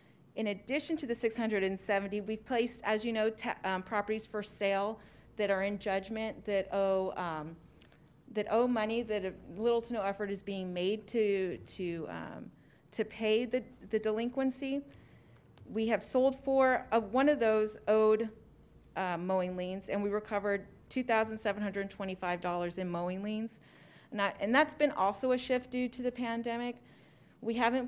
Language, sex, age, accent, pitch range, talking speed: English, female, 30-49, American, 190-230 Hz, 160 wpm